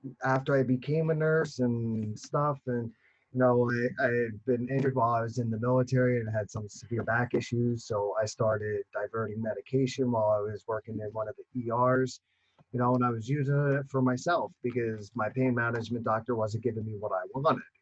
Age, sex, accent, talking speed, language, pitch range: 30-49, male, American, 205 wpm, English, 115-135 Hz